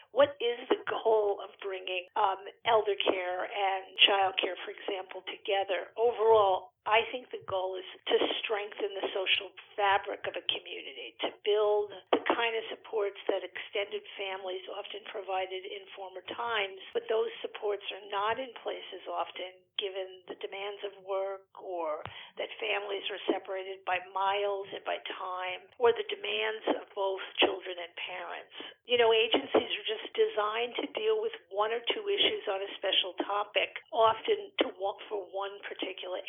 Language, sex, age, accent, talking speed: English, female, 50-69, American, 160 wpm